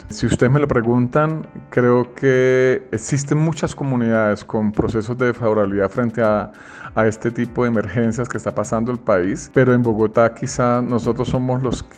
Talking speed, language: 165 wpm, Spanish